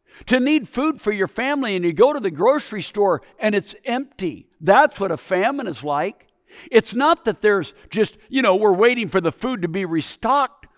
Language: English